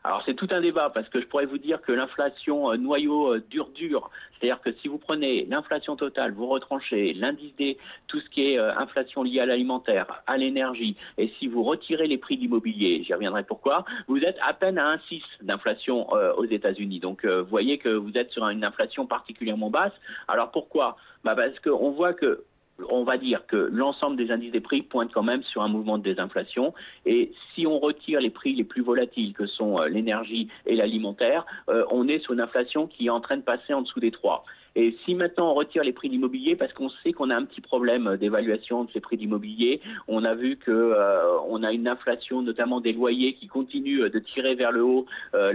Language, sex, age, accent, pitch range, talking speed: French, male, 50-69, French, 120-180 Hz, 215 wpm